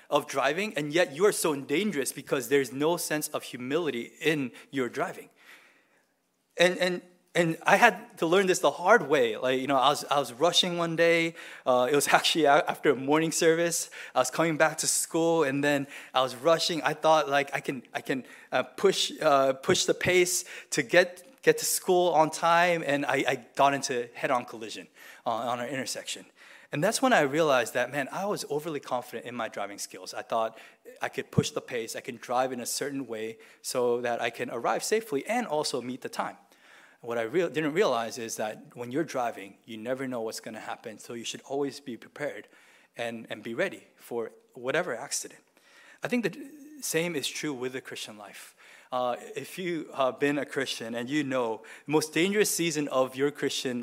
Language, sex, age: English, male, 20-39